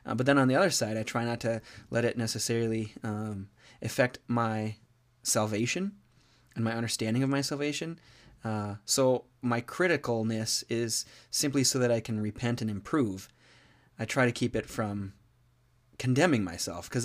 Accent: American